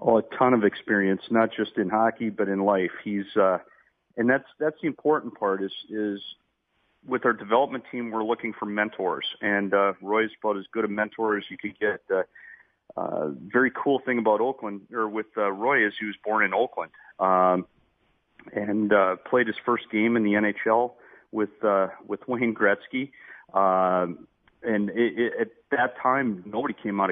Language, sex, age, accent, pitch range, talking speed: English, male, 40-59, American, 95-115 Hz, 185 wpm